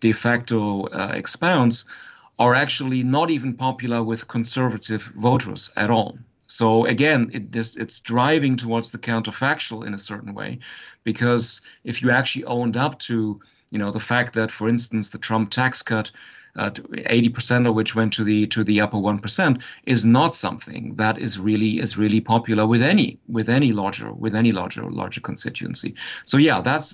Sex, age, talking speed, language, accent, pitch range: male, 40-59, 170 wpm, English, German, 110-130 Hz